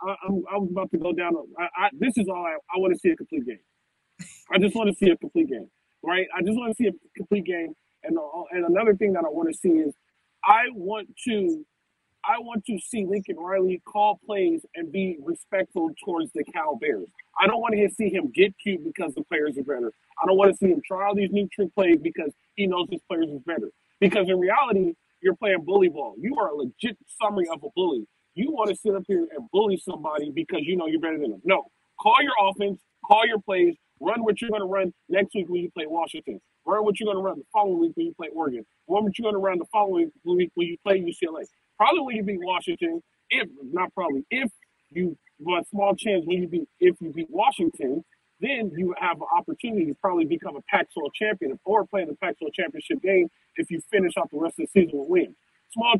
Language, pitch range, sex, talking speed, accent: English, 180-290 Hz, male, 240 wpm, American